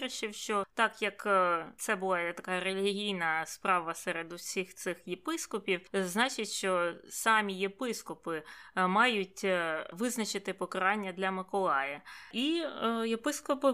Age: 20-39